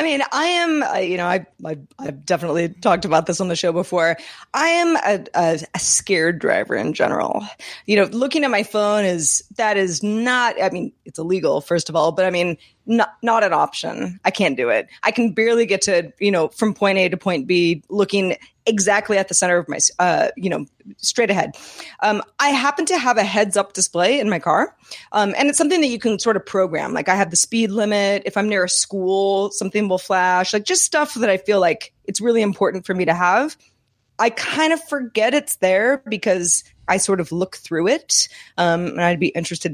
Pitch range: 175-230 Hz